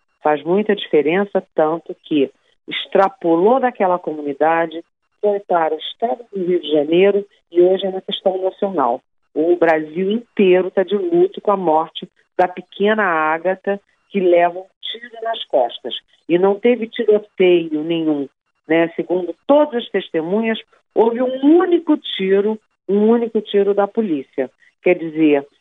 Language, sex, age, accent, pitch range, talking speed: Portuguese, female, 40-59, Brazilian, 165-215 Hz, 140 wpm